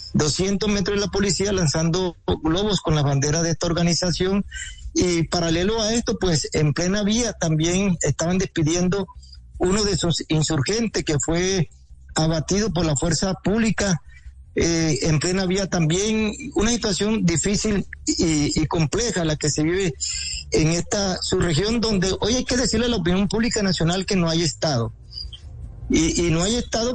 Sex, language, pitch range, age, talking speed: male, Spanish, 160-205 Hz, 40-59, 165 wpm